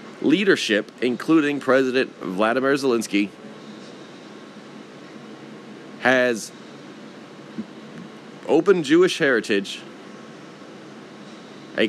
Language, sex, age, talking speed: English, male, 40-59, 50 wpm